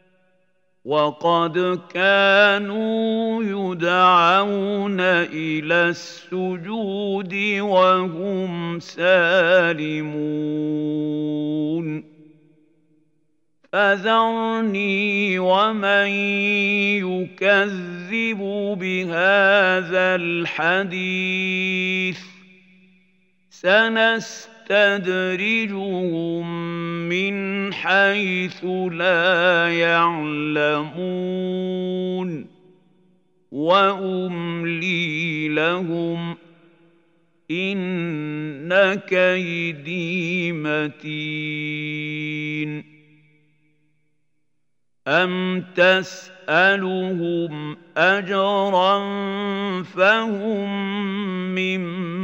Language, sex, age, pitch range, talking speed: Arabic, male, 50-69, 170-195 Hz, 30 wpm